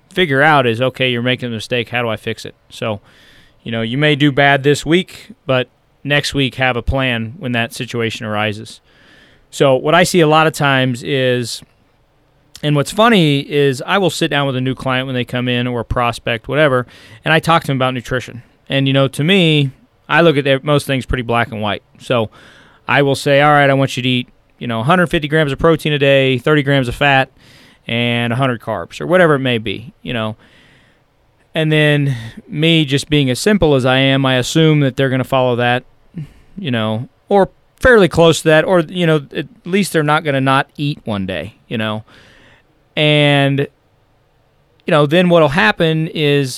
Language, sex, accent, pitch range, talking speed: English, male, American, 125-150 Hz, 205 wpm